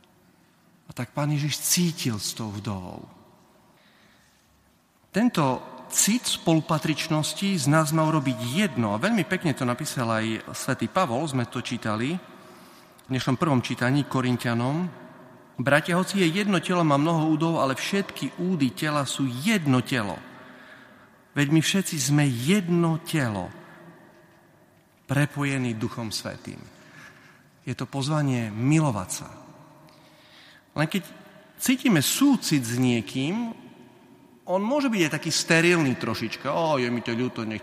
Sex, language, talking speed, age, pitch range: male, Slovak, 130 wpm, 40-59, 115-175 Hz